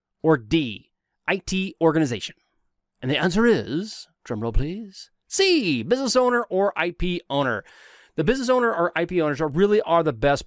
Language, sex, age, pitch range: English, male, 30-49, 120-160 Hz